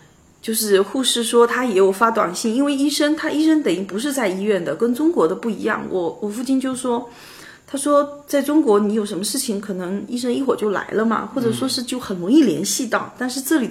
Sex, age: female, 30-49